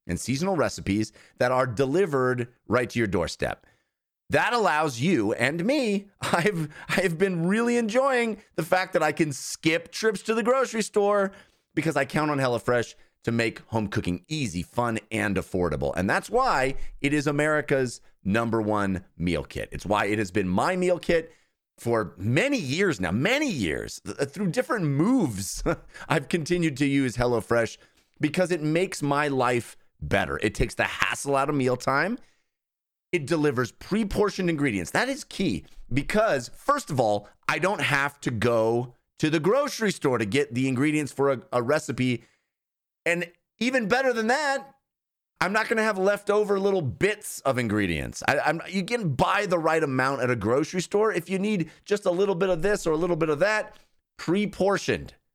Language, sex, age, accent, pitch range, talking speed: English, male, 30-49, American, 120-195 Hz, 175 wpm